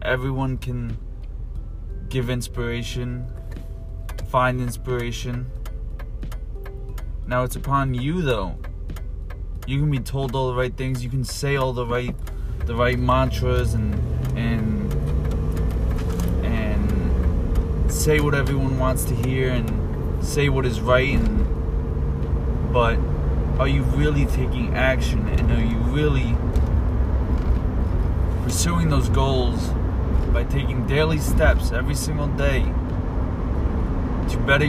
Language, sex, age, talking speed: English, male, 20-39, 110 wpm